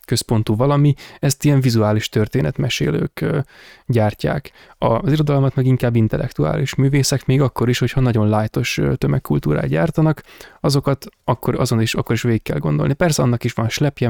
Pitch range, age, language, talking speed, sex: 110-130 Hz, 20-39, Hungarian, 150 wpm, male